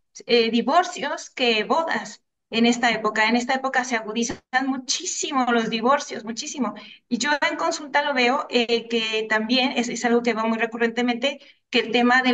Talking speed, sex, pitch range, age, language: 175 wpm, female, 220-265 Hz, 30-49, Spanish